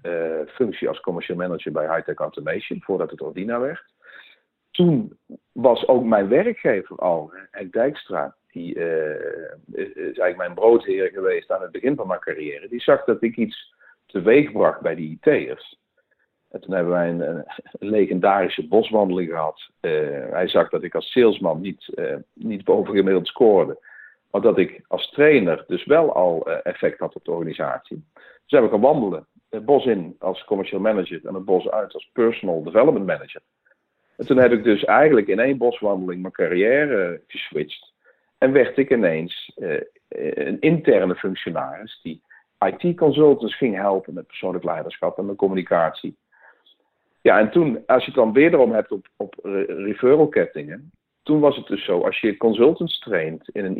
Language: Dutch